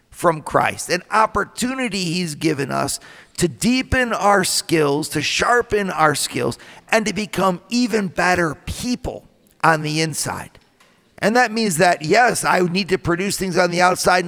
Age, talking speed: 50-69, 155 wpm